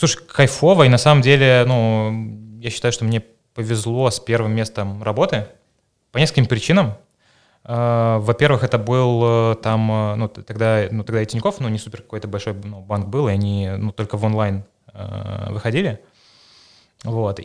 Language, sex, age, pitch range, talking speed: Russian, male, 20-39, 105-120 Hz, 150 wpm